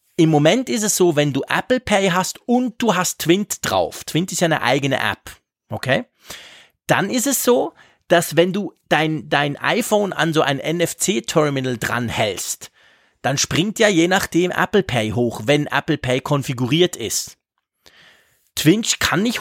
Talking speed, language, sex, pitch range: 170 wpm, German, male, 130-180 Hz